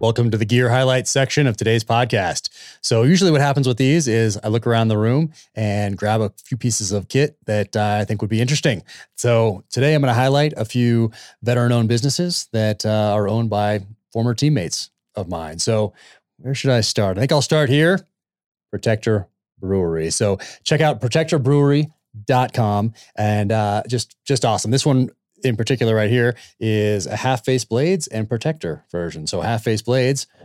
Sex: male